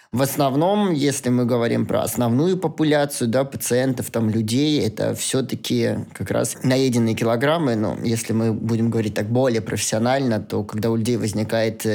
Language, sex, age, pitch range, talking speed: Russian, male, 20-39, 115-135 Hz, 155 wpm